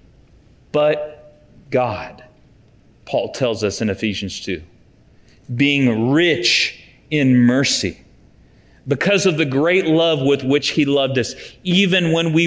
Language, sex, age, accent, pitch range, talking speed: English, male, 40-59, American, 135-205 Hz, 120 wpm